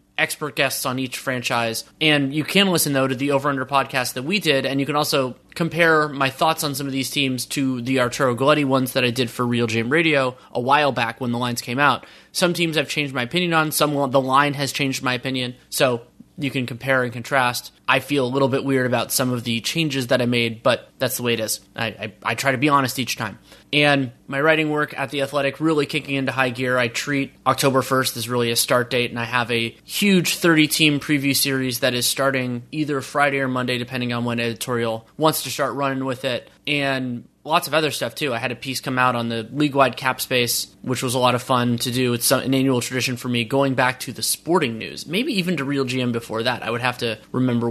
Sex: male